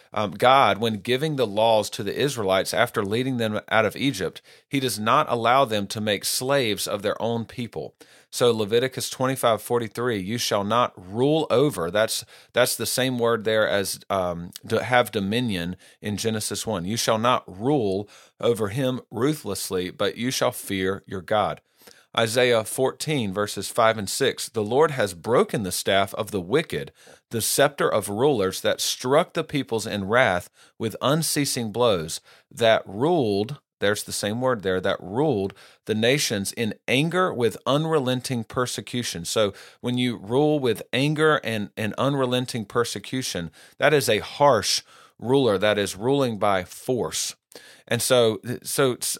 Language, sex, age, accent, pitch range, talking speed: English, male, 40-59, American, 105-130 Hz, 160 wpm